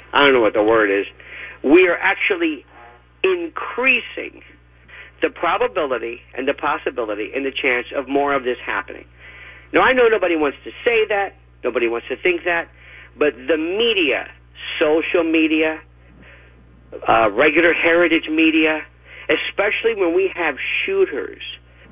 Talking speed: 140 wpm